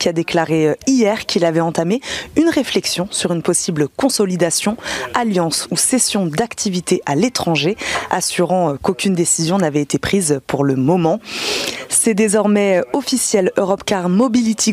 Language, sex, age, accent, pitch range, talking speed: French, female, 20-39, French, 165-235 Hz, 140 wpm